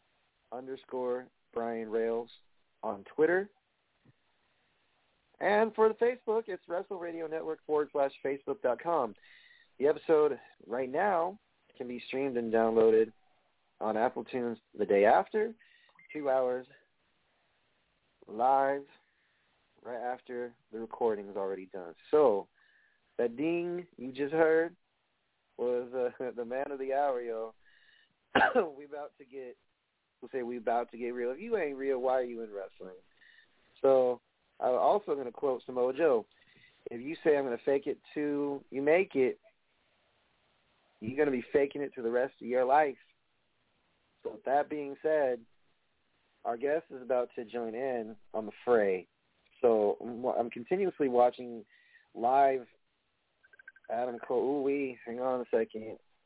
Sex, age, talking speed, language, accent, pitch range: male, 40-59, 145 wpm, English, American, 120-160 Hz